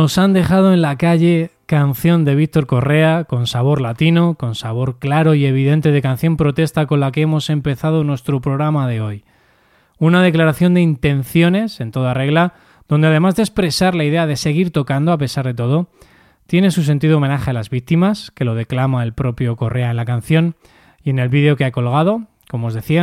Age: 20-39